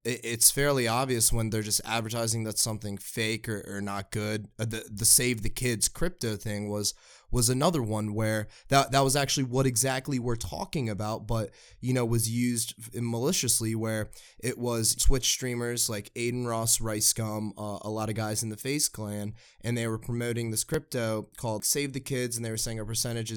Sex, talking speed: male, 195 wpm